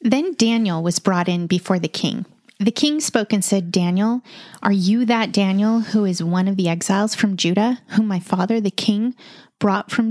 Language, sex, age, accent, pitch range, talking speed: English, female, 30-49, American, 190-235 Hz, 195 wpm